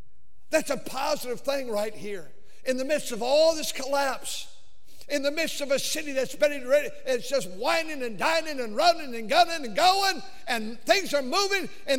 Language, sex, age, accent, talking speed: English, male, 60-79, American, 190 wpm